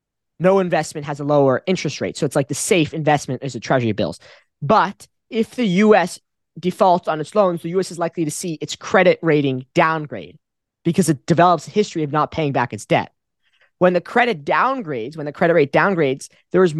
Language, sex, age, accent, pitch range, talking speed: English, male, 20-39, American, 145-180 Hz, 205 wpm